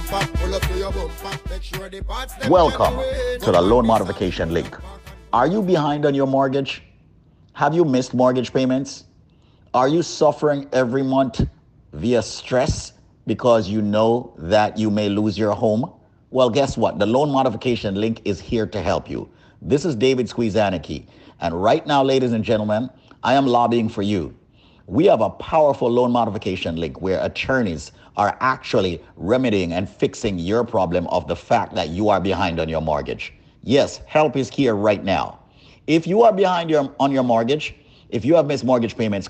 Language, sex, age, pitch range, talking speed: English, male, 50-69, 105-140 Hz, 160 wpm